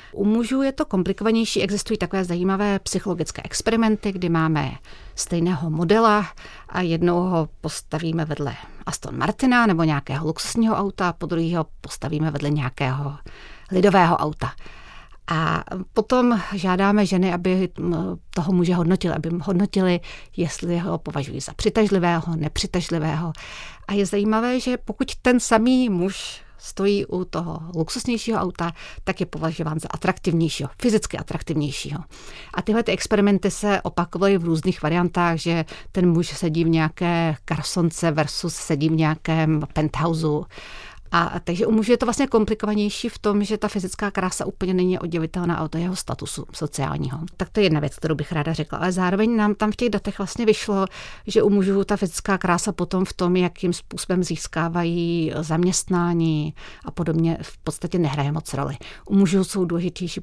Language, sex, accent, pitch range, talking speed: Czech, female, native, 160-200 Hz, 155 wpm